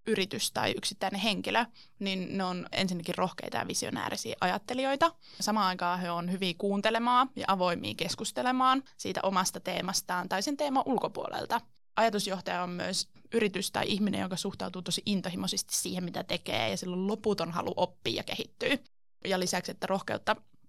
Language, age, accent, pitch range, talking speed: Finnish, 20-39, native, 185-220 Hz, 155 wpm